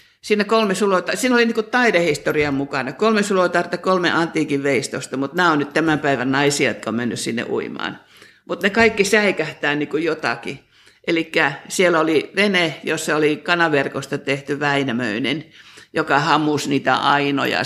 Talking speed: 150 wpm